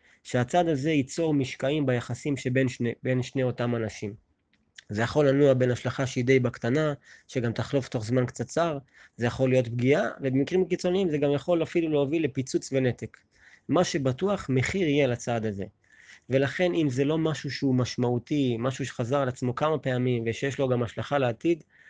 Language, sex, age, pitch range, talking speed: Hebrew, male, 20-39, 125-150 Hz, 165 wpm